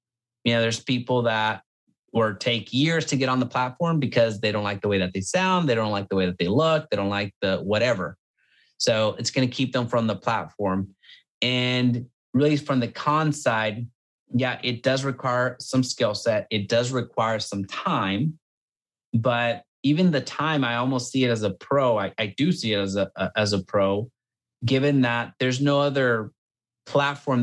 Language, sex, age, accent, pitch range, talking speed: English, male, 30-49, American, 110-135 Hz, 190 wpm